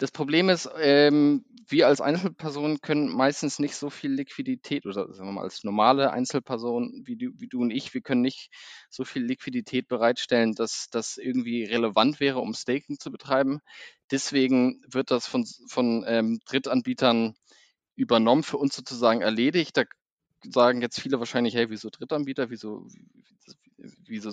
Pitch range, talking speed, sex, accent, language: 115-145 Hz, 160 wpm, male, German, German